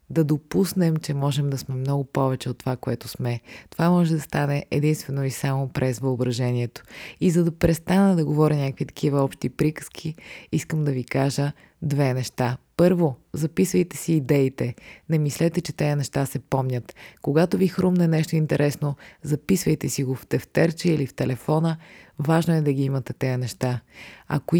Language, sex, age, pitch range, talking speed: Bulgarian, female, 20-39, 135-165 Hz, 170 wpm